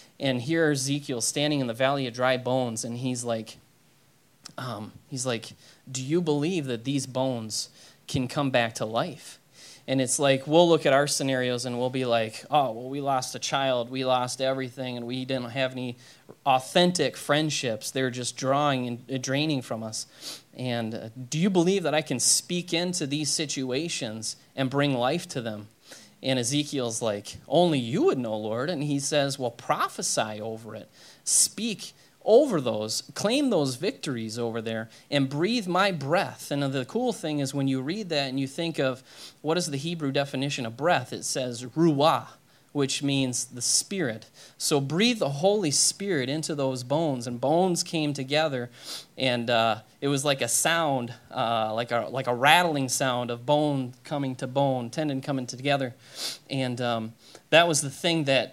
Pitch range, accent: 125-150 Hz, American